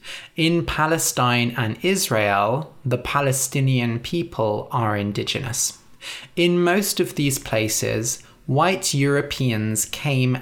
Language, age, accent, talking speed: English, 20-39, British, 100 wpm